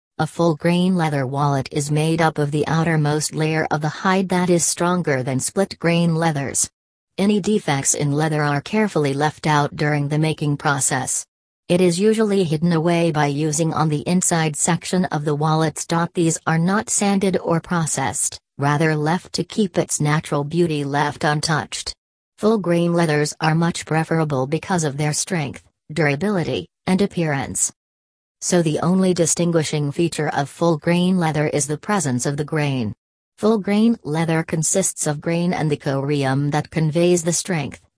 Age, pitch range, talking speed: 40-59, 145-175 Hz, 160 wpm